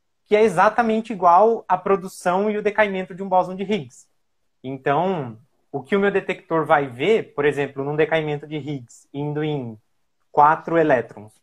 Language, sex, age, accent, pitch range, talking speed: Portuguese, male, 20-39, Brazilian, 140-190 Hz, 170 wpm